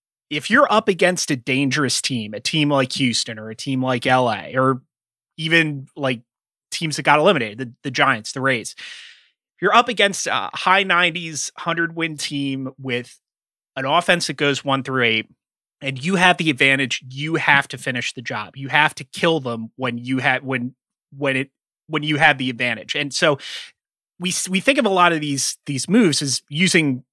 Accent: American